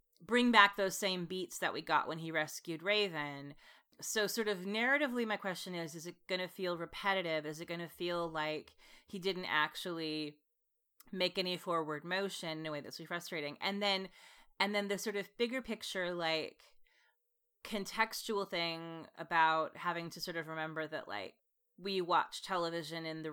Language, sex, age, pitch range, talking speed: English, female, 30-49, 160-210 Hz, 175 wpm